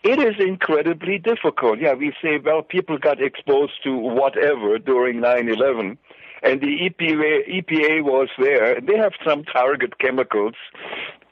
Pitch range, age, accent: 125-185 Hz, 60-79, German